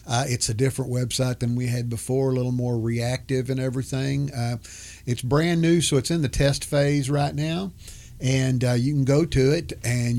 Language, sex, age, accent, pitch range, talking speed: English, male, 50-69, American, 110-130 Hz, 205 wpm